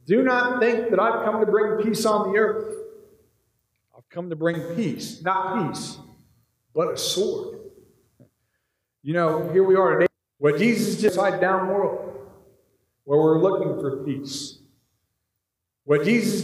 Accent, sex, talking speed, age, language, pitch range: American, male, 150 wpm, 50-69, English, 160-205 Hz